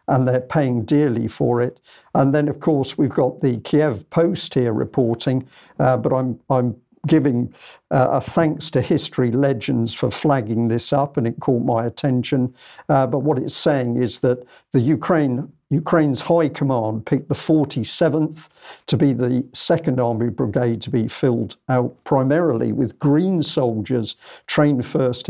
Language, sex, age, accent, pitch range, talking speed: English, male, 50-69, British, 120-145 Hz, 160 wpm